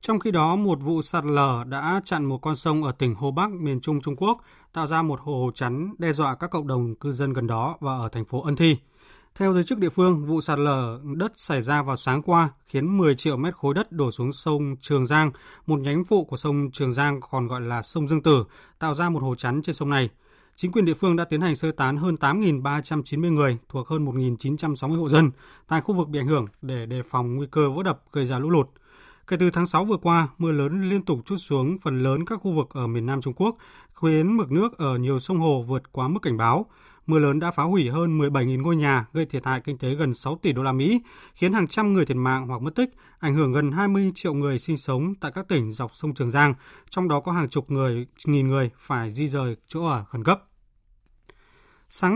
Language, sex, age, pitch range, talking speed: Vietnamese, male, 20-39, 135-170 Hz, 245 wpm